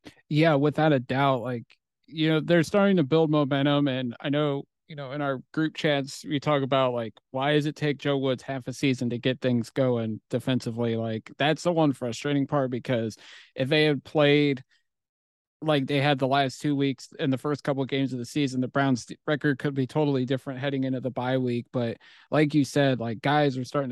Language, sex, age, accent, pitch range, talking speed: English, male, 30-49, American, 130-145 Hz, 215 wpm